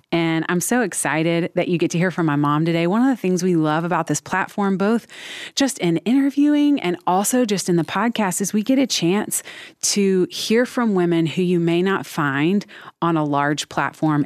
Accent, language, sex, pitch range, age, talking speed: American, English, female, 155-200 Hz, 30-49, 210 wpm